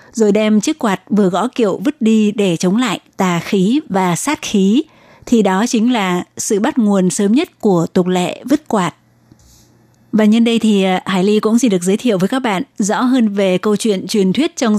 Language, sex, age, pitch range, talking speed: Vietnamese, female, 20-39, 190-225 Hz, 215 wpm